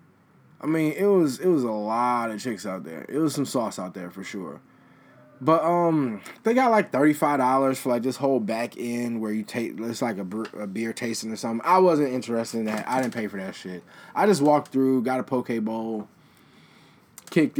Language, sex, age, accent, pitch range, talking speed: English, male, 20-39, American, 115-175 Hz, 220 wpm